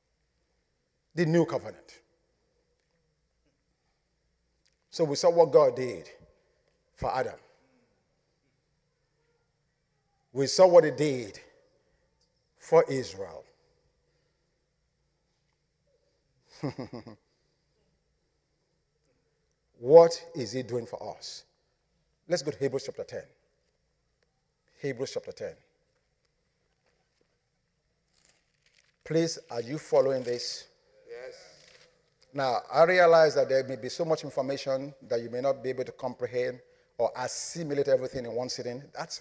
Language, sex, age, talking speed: English, male, 50-69, 95 wpm